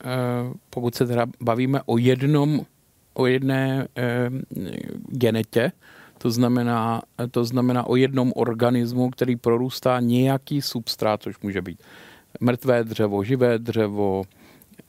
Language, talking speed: Czech, 110 wpm